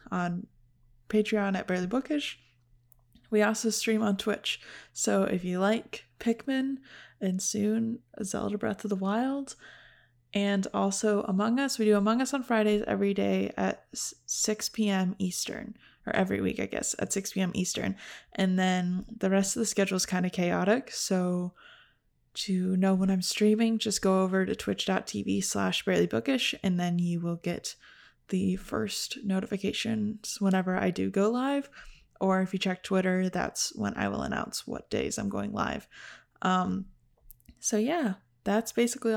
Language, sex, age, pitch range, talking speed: English, female, 20-39, 185-220 Hz, 160 wpm